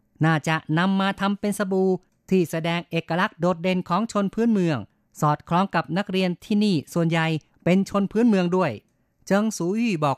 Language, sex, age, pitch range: Thai, female, 30-49, 160-195 Hz